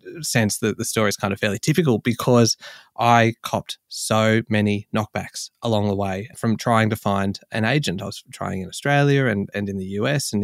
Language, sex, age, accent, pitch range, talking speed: English, male, 20-39, Australian, 110-140 Hz, 200 wpm